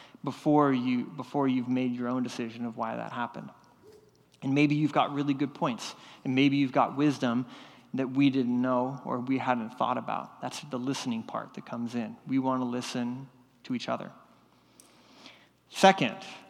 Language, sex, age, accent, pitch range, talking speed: English, male, 30-49, American, 130-160 Hz, 175 wpm